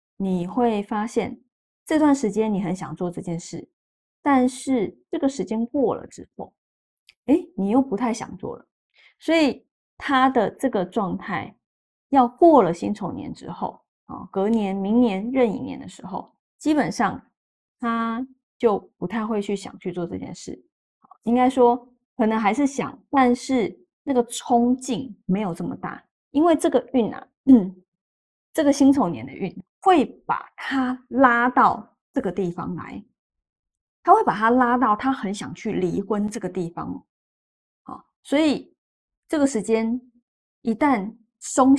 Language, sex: Chinese, female